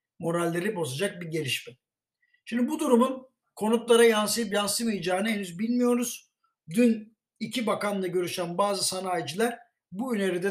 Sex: male